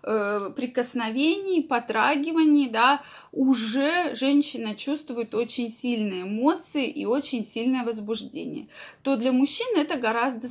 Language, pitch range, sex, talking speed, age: Russian, 225-285 Hz, female, 105 wpm, 20-39